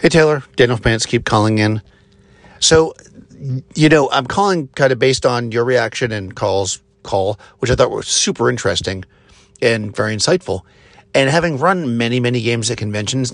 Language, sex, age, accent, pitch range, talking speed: English, male, 50-69, American, 105-140 Hz, 170 wpm